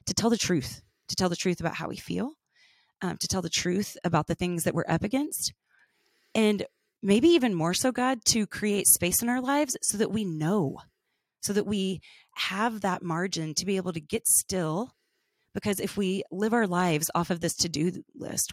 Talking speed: 205 wpm